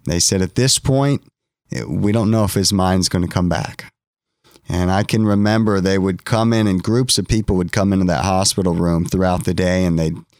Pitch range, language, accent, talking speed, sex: 95-120 Hz, English, American, 220 wpm, male